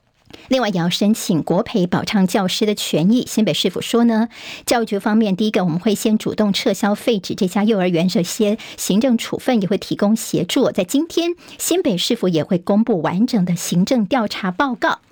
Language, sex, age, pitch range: Chinese, male, 50-69, 195-245 Hz